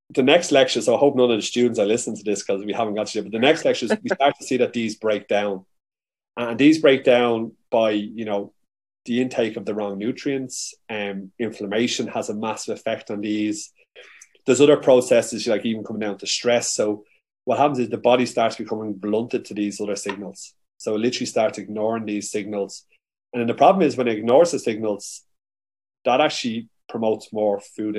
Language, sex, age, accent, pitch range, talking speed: English, male, 30-49, Irish, 105-125 Hz, 210 wpm